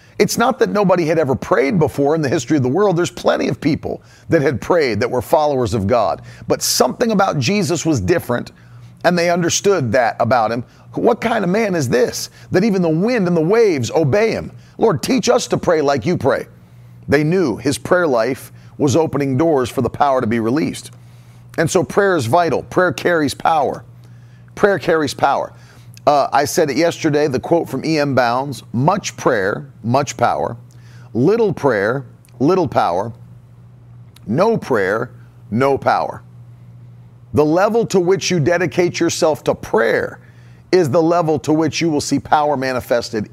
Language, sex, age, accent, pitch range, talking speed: English, male, 40-59, American, 120-170 Hz, 175 wpm